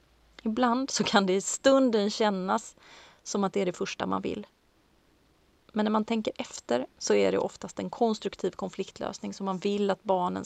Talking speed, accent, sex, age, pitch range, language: 185 wpm, native, female, 30-49, 190-240 Hz, Swedish